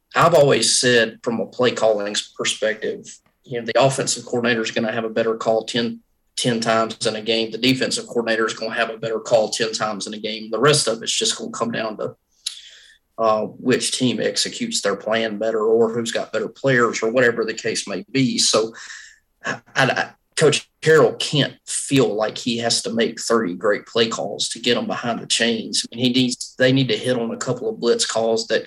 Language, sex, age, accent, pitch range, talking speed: English, male, 30-49, American, 110-125 Hz, 220 wpm